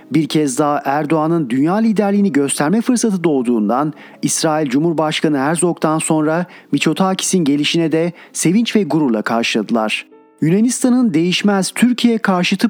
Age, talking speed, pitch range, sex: 40-59, 115 wpm, 155-200 Hz, male